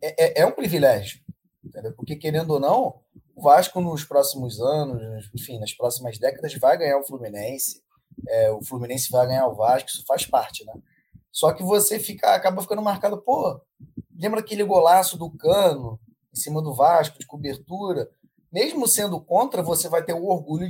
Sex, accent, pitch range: male, Brazilian, 130-175 Hz